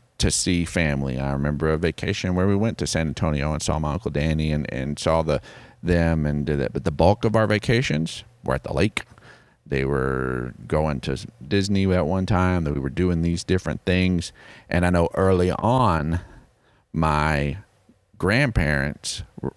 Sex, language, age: male, English, 40-59